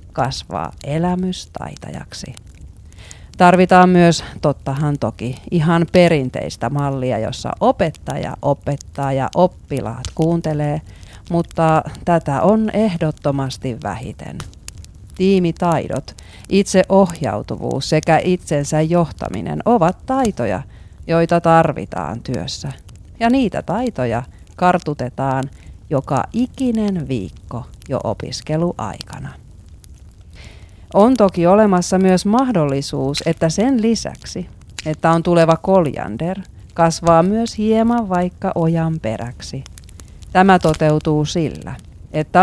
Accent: native